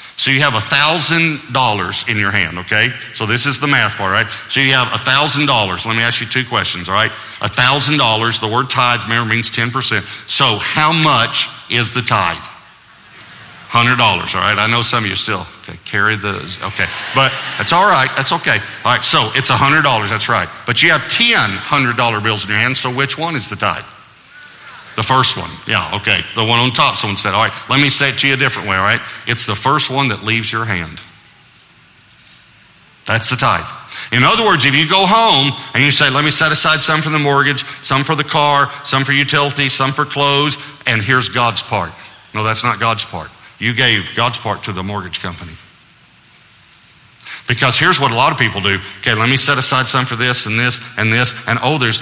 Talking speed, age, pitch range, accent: 210 wpm, 50-69, 105-140 Hz, American